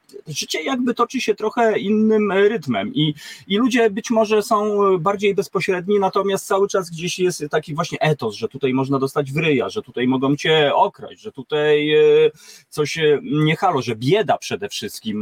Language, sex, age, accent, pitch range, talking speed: Polish, male, 30-49, native, 130-190 Hz, 165 wpm